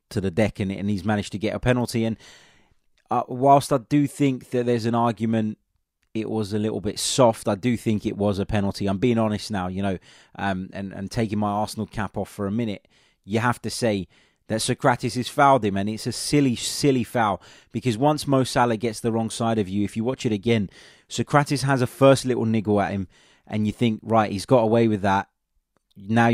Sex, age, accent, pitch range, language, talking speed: male, 20-39, British, 105-125 Hz, English, 225 wpm